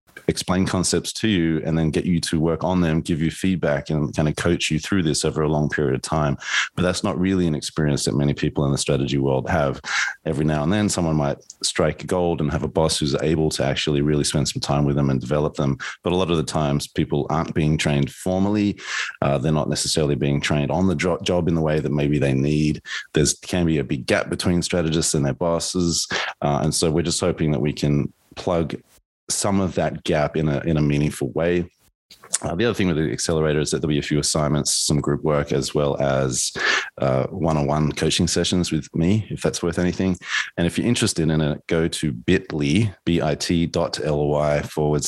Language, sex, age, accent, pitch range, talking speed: English, male, 30-49, Australian, 75-85 Hz, 225 wpm